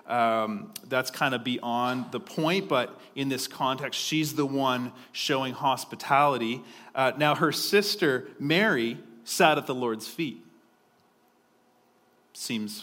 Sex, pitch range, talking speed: male, 120-150 Hz, 140 wpm